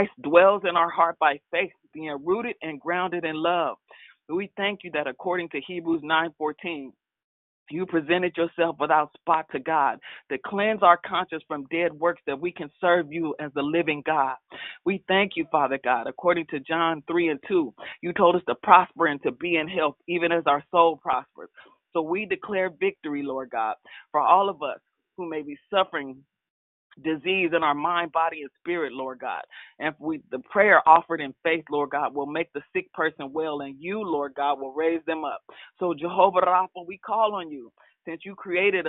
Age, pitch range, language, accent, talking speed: 40-59, 150-180 Hz, English, American, 190 wpm